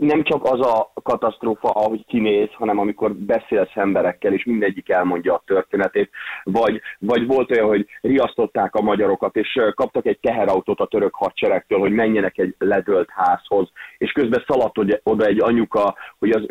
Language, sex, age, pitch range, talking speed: Hungarian, male, 30-49, 100-125 Hz, 160 wpm